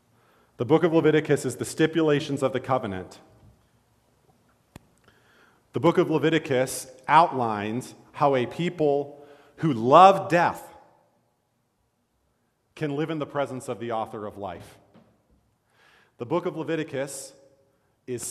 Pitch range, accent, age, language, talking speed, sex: 115-145 Hz, American, 40-59, English, 120 wpm, male